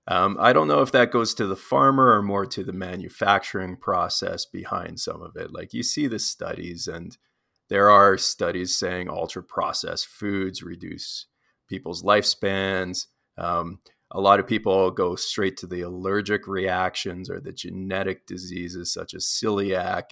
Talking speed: 160 wpm